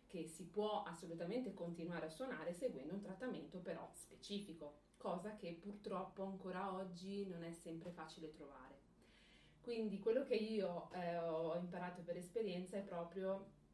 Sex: female